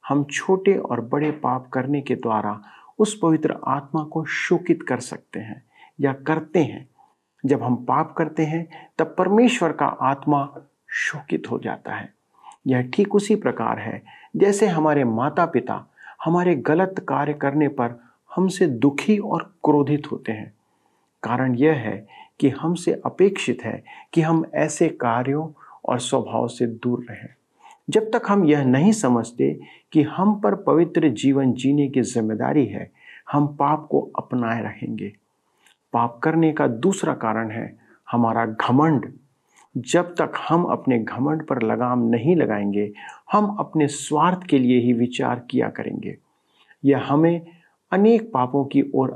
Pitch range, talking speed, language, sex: 125-165 Hz, 150 wpm, Hindi, male